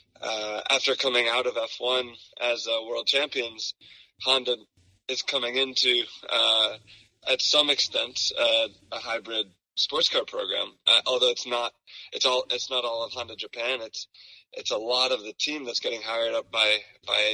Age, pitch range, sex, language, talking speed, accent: 20-39, 110-130 Hz, male, English, 170 wpm, American